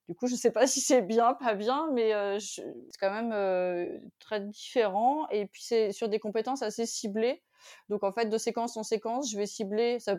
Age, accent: 30-49, French